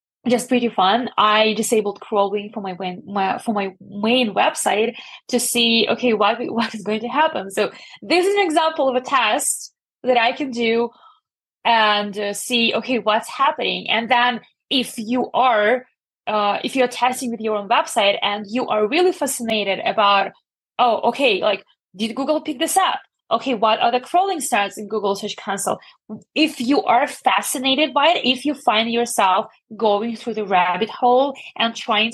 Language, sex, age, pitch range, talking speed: English, female, 20-39, 210-255 Hz, 175 wpm